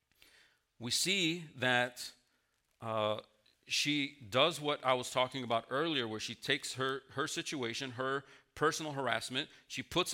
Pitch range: 115-160 Hz